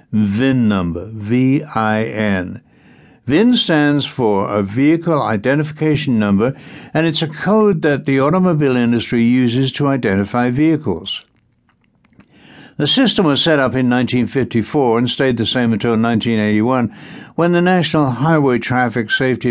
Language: English